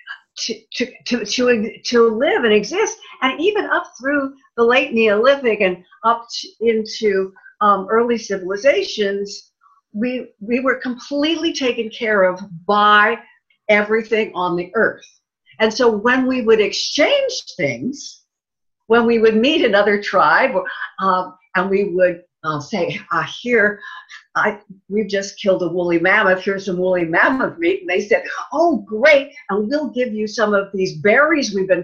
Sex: female